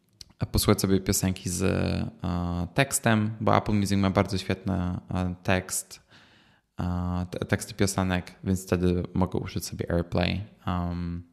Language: Polish